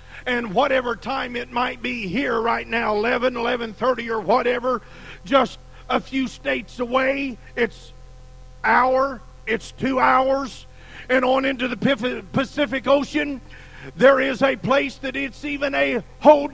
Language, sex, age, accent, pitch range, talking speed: English, male, 50-69, American, 225-270 Hz, 140 wpm